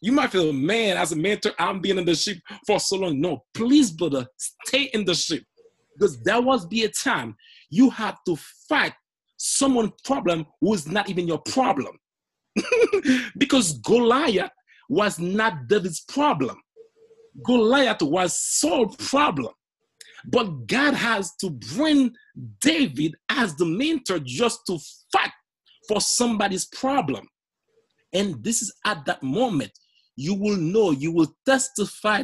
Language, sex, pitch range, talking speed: English, male, 175-255 Hz, 145 wpm